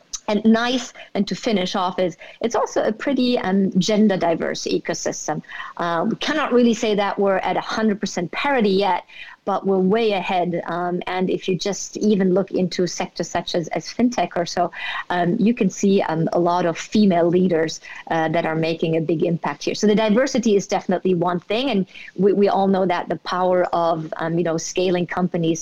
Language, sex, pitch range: English, female, 175-200 Hz